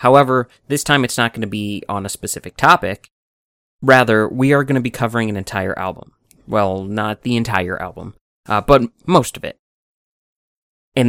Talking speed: 180 wpm